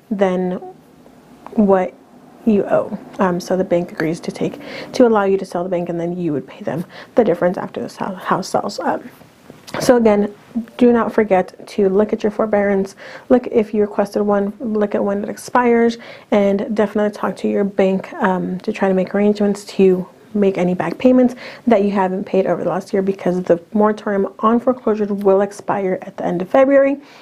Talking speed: 195 wpm